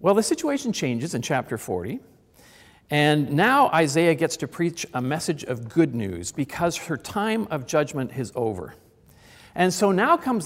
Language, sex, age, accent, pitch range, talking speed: English, male, 50-69, American, 125-185 Hz, 165 wpm